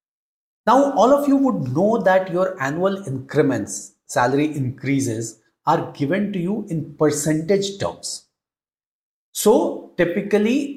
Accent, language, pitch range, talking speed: Indian, English, 155-225 Hz, 115 wpm